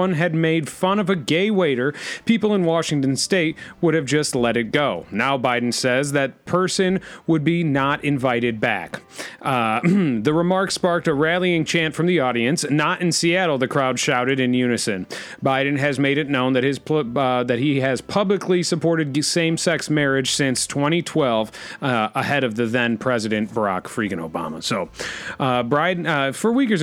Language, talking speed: English, 170 wpm